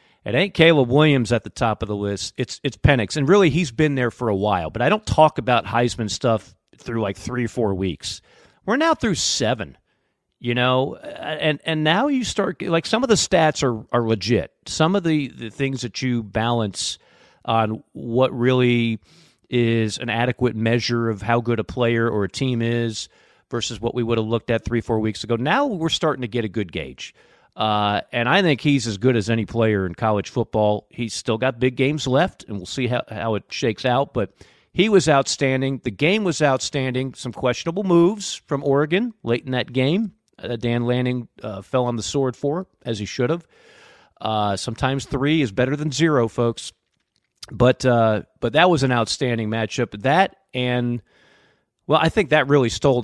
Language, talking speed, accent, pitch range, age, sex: English, 200 wpm, American, 115-145 Hz, 40-59, male